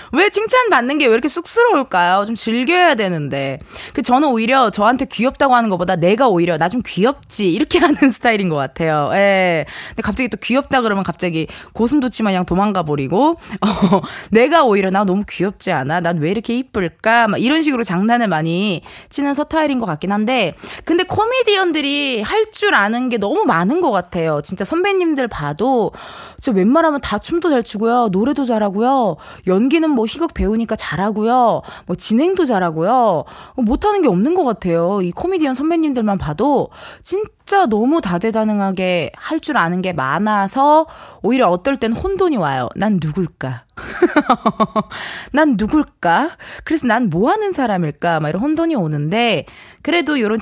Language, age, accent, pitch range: Korean, 20-39, native, 185-285 Hz